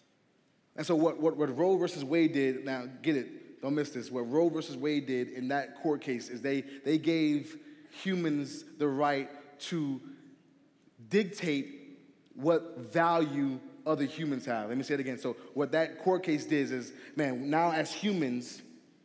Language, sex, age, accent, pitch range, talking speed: English, male, 20-39, American, 140-170 Hz, 175 wpm